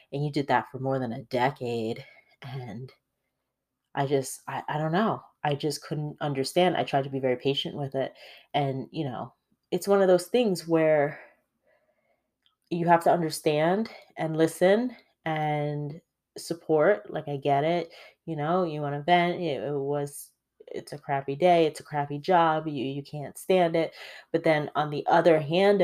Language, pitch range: English, 140-170 Hz